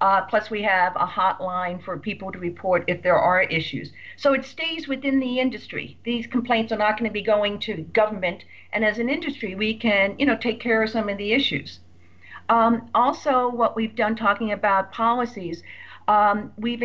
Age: 50-69